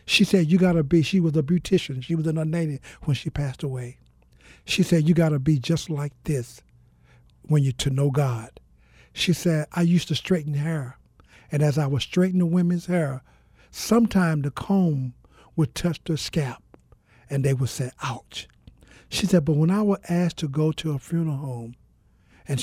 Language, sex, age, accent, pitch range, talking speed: English, male, 60-79, American, 125-165 Hz, 185 wpm